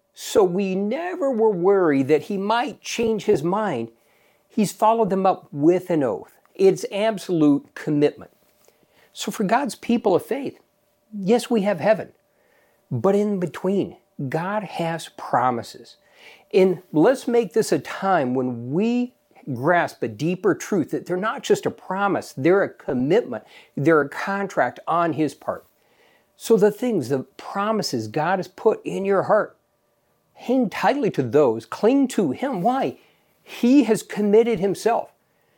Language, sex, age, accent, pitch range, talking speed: English, male, 50-69, American, 175-235 Hz, 145 wpm